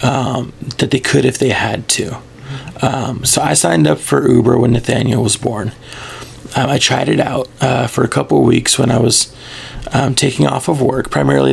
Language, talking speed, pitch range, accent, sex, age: English, 205 wpm, 115-130 Hz, American, male, 30-49